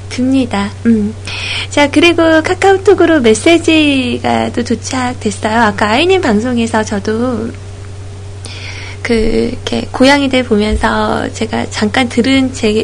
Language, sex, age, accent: Korean, female, 20-39, native